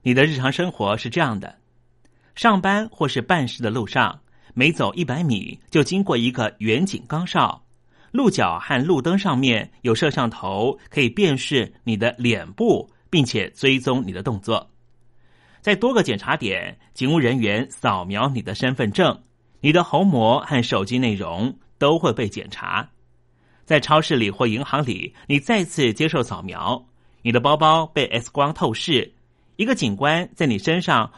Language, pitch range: Chinese, 120-155 Hz